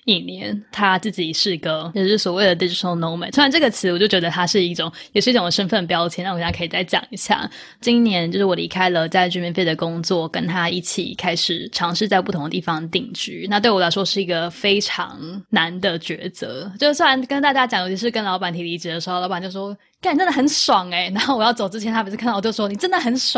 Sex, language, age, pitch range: female, English, 10-29, 170-215 Hz